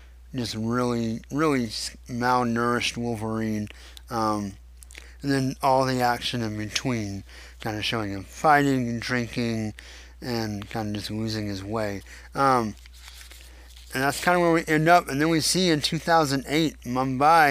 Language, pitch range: English, 100-130 Hz